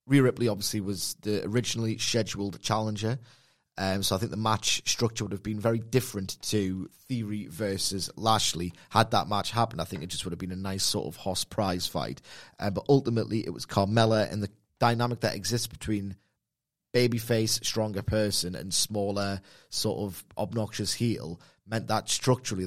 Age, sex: 30-49, male